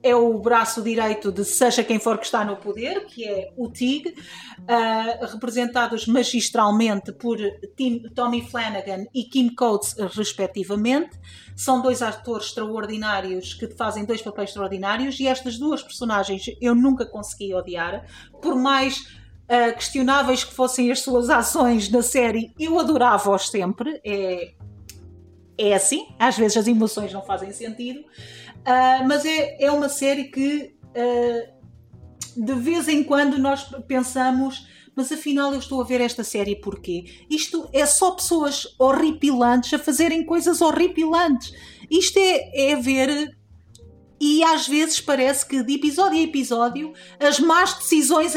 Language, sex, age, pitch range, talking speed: Portuguese, female, 40-59, 215-280 Hz, 145 wpm